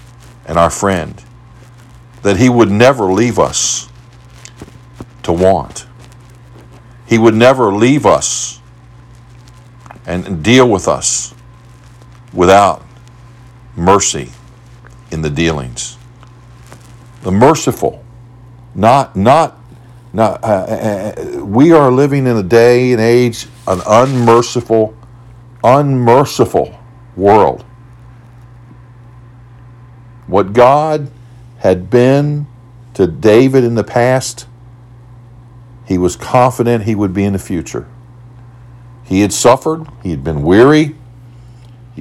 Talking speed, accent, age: 100 wpm, American, 50-69